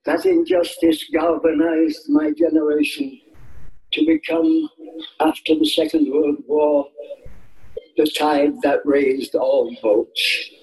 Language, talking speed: English, 100 wpm